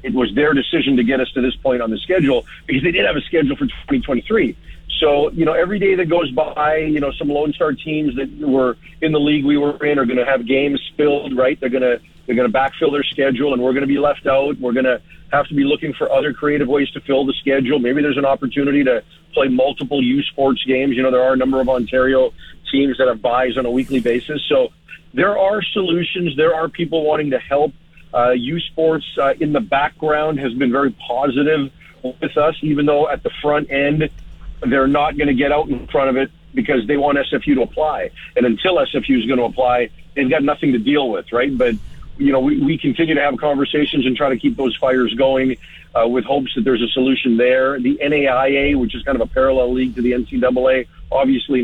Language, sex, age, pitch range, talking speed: English, male, 40-59, 130-150 Hz, 235 wpm